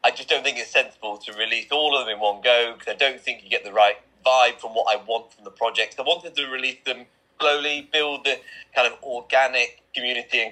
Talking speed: 250 wpm